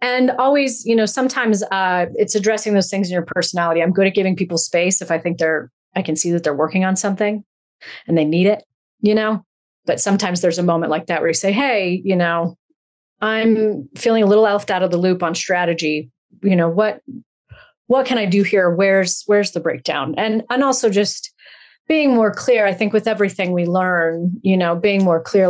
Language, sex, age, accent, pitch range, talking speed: English, female, 30-49, American, 175-215 Hz, 215 wpm